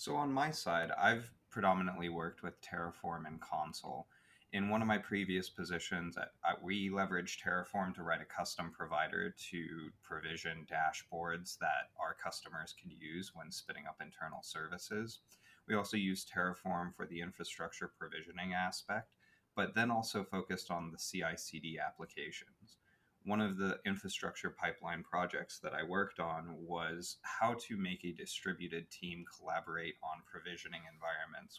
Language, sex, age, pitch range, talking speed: English, male, 30-49, 85-95 Hz, 145 wpm